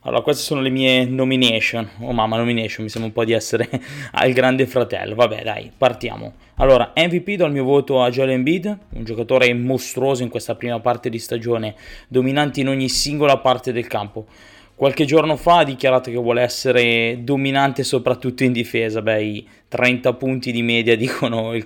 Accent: native